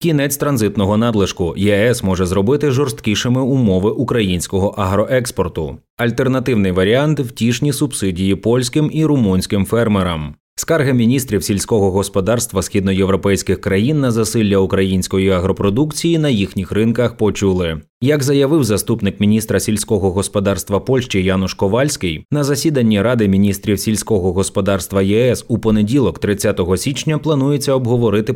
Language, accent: Ukrainian, native